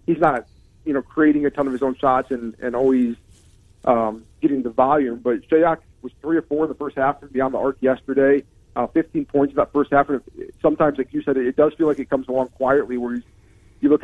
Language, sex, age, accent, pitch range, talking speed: English, male, 40-59, American, 120-145 Hz, 240 wpm